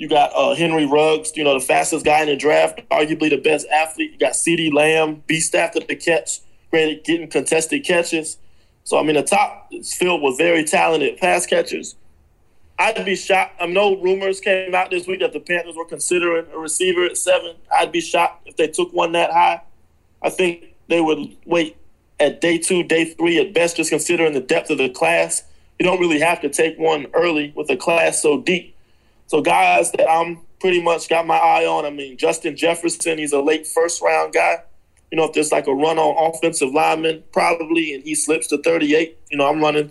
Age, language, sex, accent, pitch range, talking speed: 20-39, English, male, American, 150-170 Hz, 215 wpm